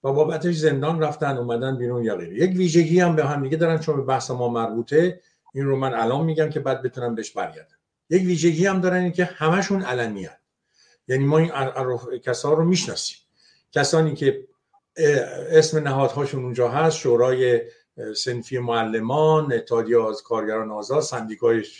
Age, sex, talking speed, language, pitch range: 50-69, male, 160 wpm, Persian, 125-160 Hz